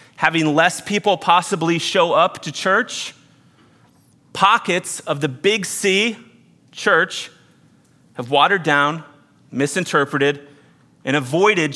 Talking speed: 100 wpm